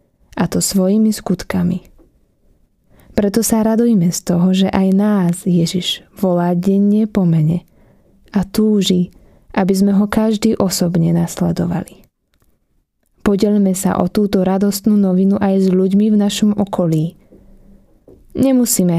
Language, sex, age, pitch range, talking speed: Slovak, female, 20-39, 180-210 Hz, 120 wpm